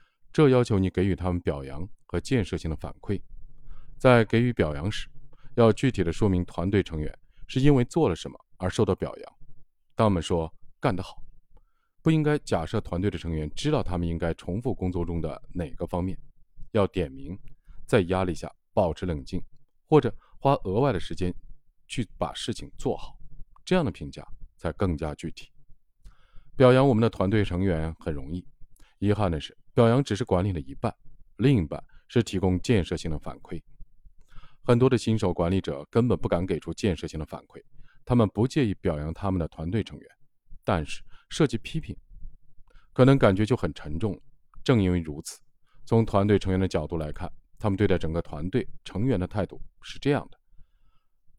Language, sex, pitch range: Chinese, male, 85-130 Hz